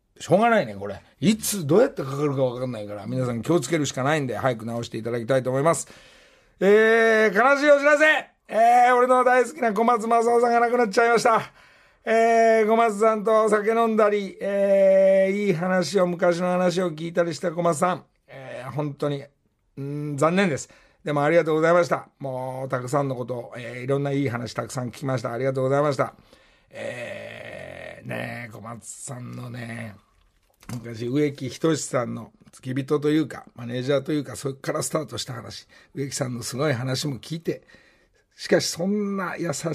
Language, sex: Japanese, male